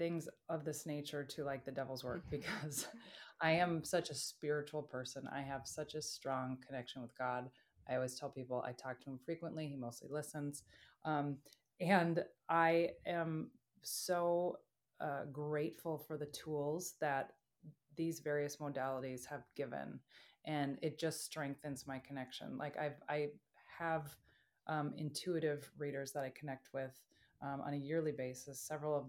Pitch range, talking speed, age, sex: 135-155 Hz, 155 wpm, 30-49, female